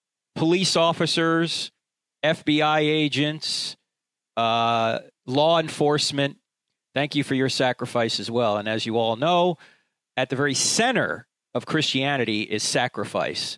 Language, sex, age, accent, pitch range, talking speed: English, male, 40-59, American, 125-165 Hz, 120 wpm